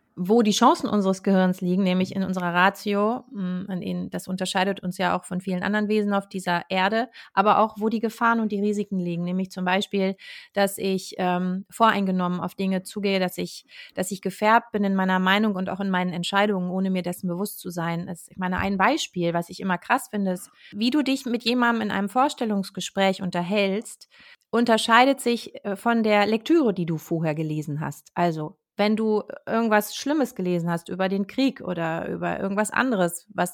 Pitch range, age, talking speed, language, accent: 185-220 Hz, 30-49, 190 wpm, German, German